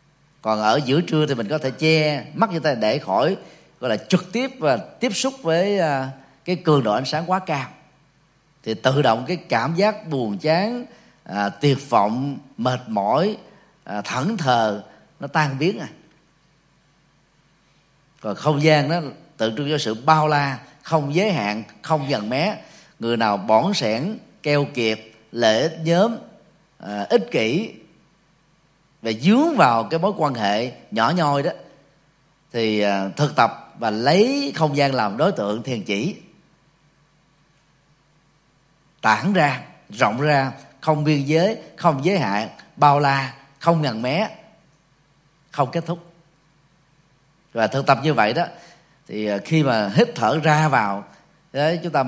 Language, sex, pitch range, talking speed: Vietnamese, male, 140-170 Hz, 150 wpm